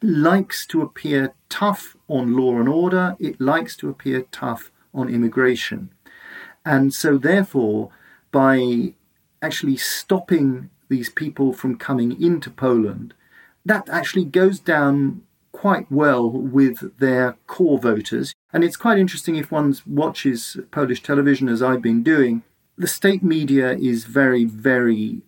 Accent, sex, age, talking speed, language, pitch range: British, male, 40-59, 135 wpm, English, 120-155 Hz